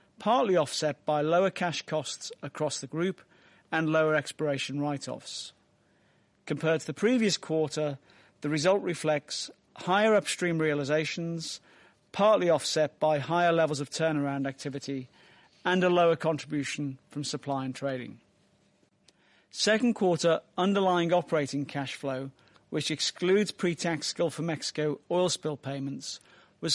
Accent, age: British, 40-59